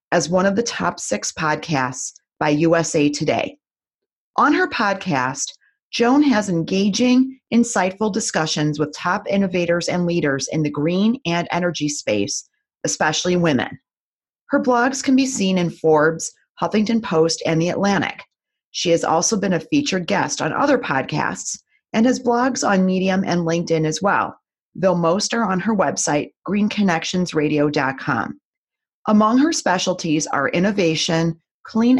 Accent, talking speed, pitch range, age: American, 140 wpm, 160-225 Hz, 30-49